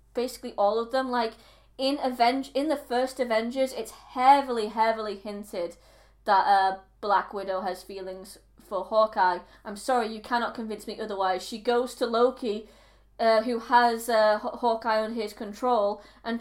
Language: English